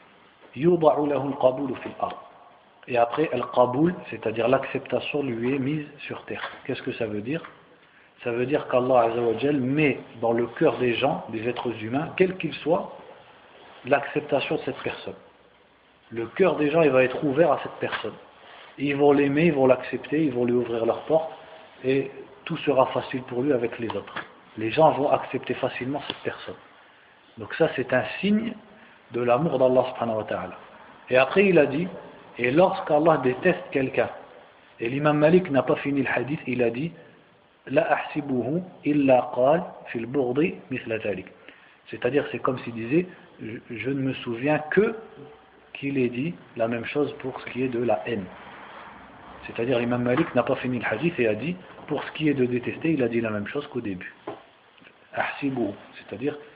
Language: French